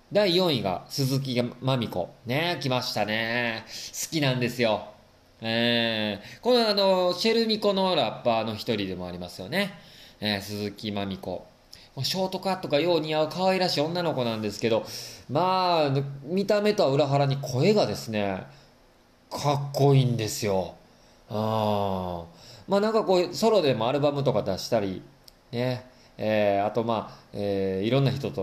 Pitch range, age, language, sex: 105-150 Hz, 20-39, Japanese, male